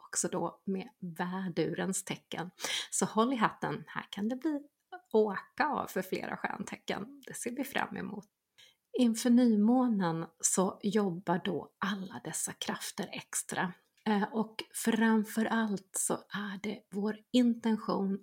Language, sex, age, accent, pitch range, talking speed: Swedish, female, 30-49, native, 185-225 Hz, 130 wpm